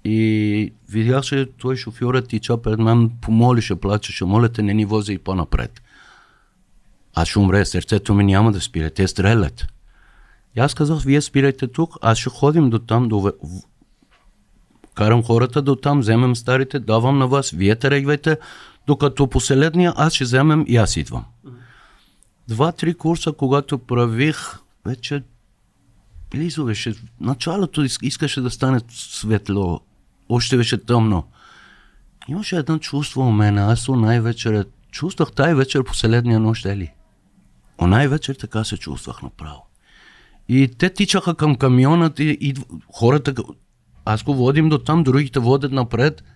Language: Bulgarian